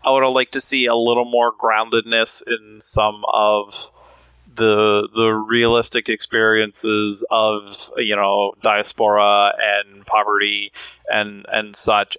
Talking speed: 130 wpm